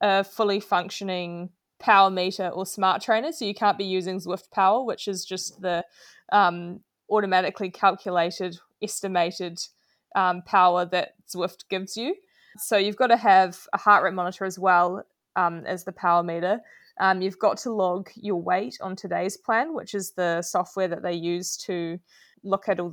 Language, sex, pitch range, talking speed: English, female, 180-205 Hz, 175 wpm